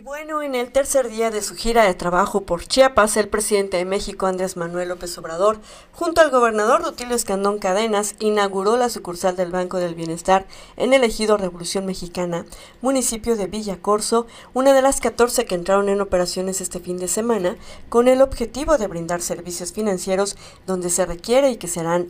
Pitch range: 180-225 Hz